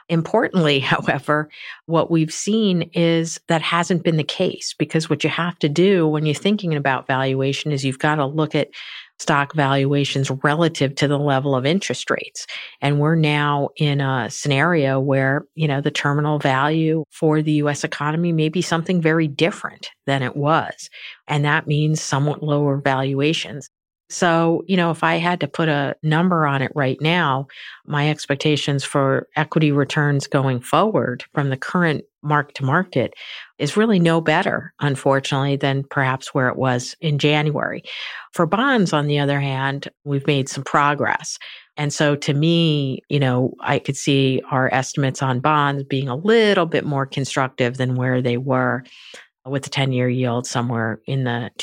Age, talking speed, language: 50-69, 165 wpm, English